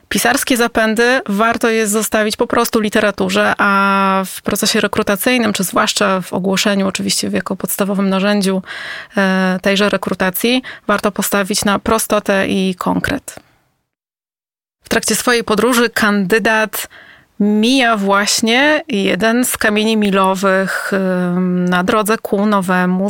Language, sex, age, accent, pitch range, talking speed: Polish, female, 20-39, native, 195-225 Hz, 110 wpm